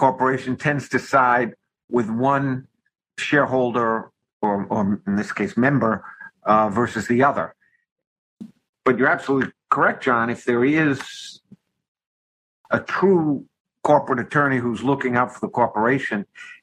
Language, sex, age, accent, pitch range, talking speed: English, male, 50-69, American, 115-140 Hz, 125 wpm